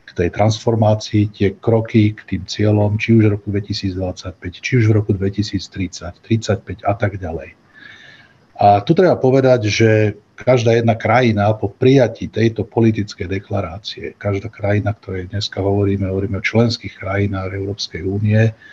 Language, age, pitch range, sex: Slovak, 50-69, 100-115 Hz, male